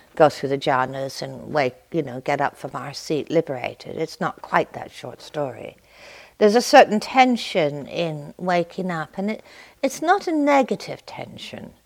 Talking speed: 170 wpm